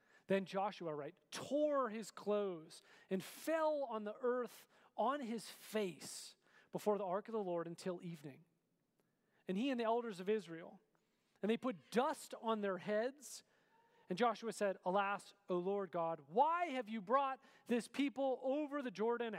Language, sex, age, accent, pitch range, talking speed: English, male, 40-59, American, 175-225 Hz, 160 wpm